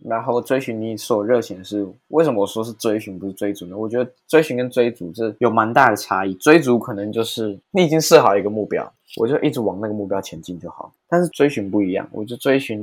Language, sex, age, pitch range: Chinese, male, 20-39, 105-125 Hz